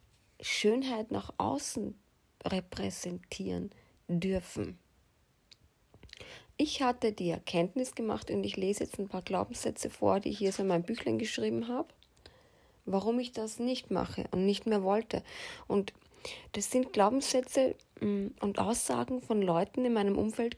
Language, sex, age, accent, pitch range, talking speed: German, female, 30-49, German, 190-245 Hz, 135 wpm